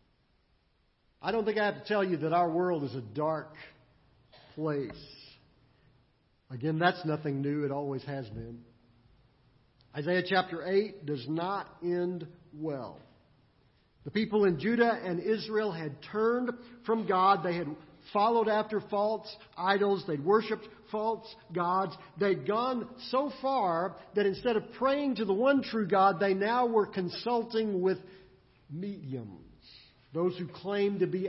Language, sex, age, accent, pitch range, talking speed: English, male, 50-69, American, 140-200 Hz, 145 wpm